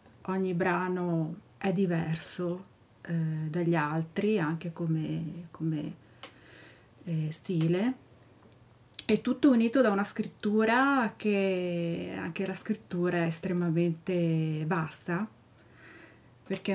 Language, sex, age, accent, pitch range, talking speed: Italian, female, 30-49, native, 160-195 Hz, 95 wpm